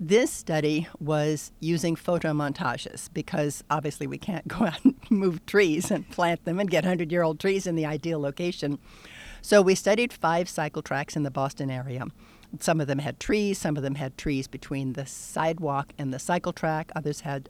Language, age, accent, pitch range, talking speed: English, 60-79, American, 145-175 Hz, 185 wpm